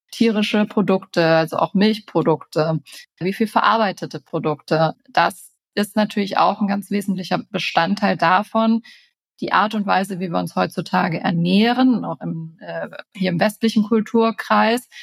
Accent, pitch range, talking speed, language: German, 175-215 Hz, 130 wpm, German